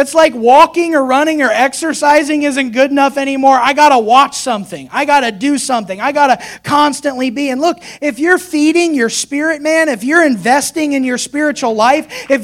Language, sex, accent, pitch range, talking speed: English, male, American, 250-305 Hz, 205 wpm